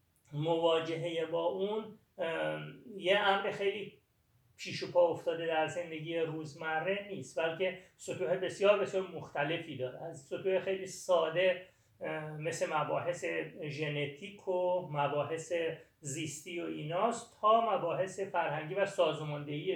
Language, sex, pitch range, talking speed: Persian, male, 155-190 Hz, 110 wpm